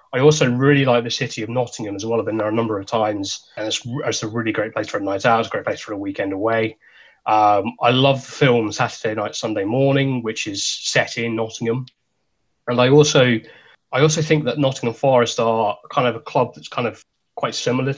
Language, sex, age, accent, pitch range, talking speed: English, male, 20-39, British, 105-130 Hz, 225 wpm